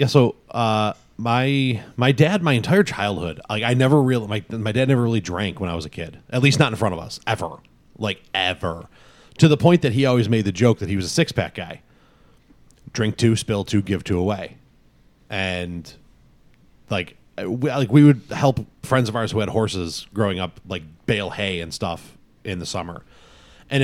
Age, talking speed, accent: 30-49, 205 wpm, American